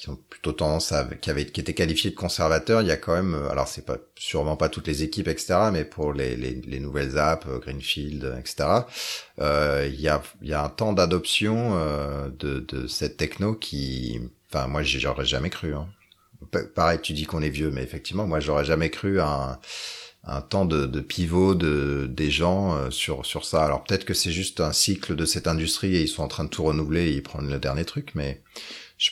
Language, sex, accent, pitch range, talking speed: French, male, French, 70-90 Hz, 220 wpm